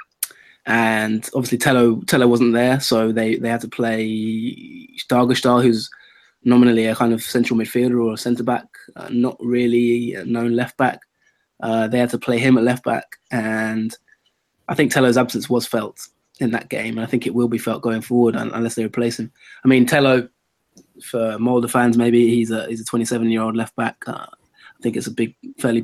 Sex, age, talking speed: male, 20-39, 200 wpm